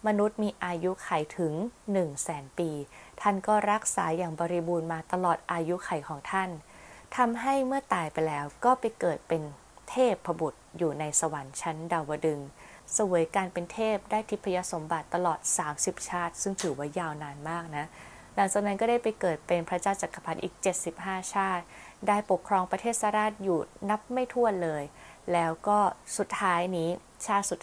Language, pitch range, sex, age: Thai, 165-205 Hz, female, 20-39